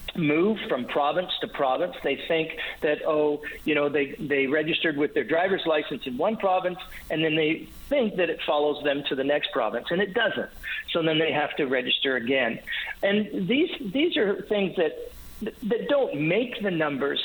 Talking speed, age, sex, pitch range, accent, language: 190 wpm, 50-69, male, 145-195 Hz, American, English